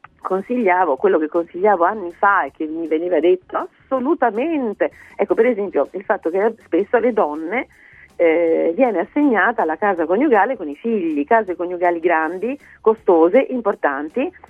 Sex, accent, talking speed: female, native, 145 wpm